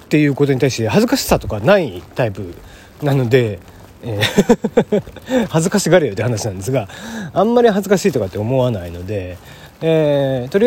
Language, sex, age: Japanese, male, 40-59